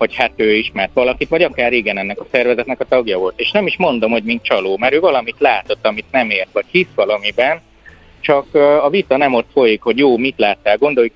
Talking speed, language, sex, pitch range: 225 wpm, Hungarian, male, 105-145 Hz